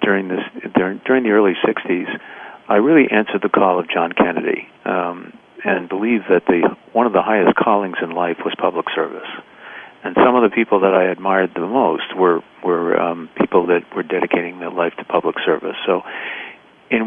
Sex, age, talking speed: male, 50-69, 185 wpm